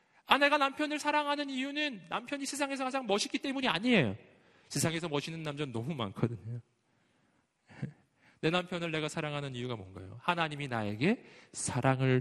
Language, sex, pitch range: Korean, male, 115-170 Hz